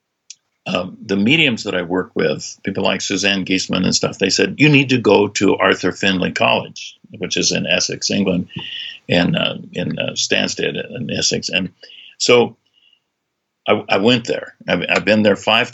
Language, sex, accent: English, male, American